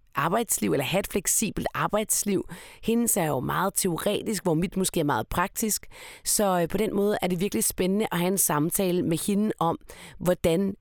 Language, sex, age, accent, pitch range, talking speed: Danish, female, 30-49, native, 155-205 Hz, 185 wpm